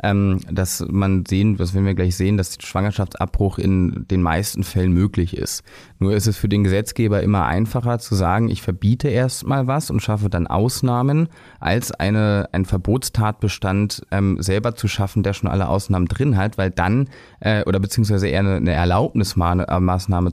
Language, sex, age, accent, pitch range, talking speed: German, male, 30-49, German, 95-110 Hz, 170 wpm